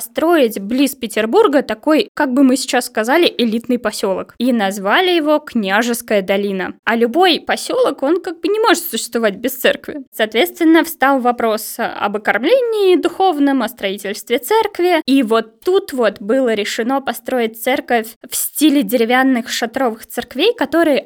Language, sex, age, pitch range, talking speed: Russian, female, 20-39, 230-320 Hz, 140 wpm